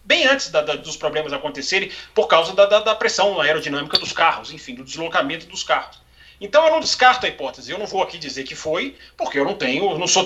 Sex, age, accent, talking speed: male, 30-49, Brazilian, 235 wpm